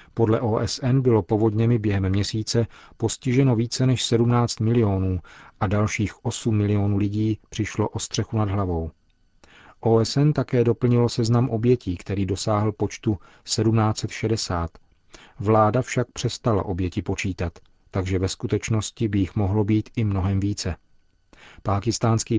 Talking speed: 125 wpm